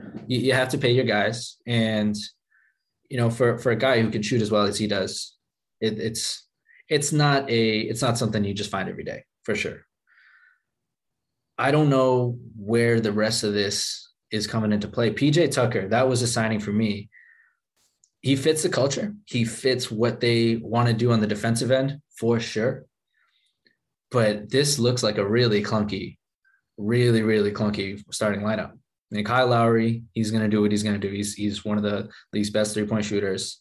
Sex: male